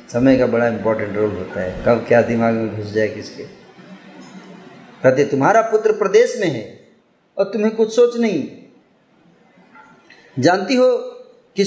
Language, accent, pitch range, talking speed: Hindi, native, 150-220 Hz, 140 wpm